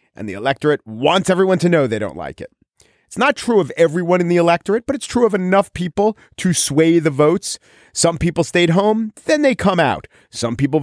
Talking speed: 215 wpm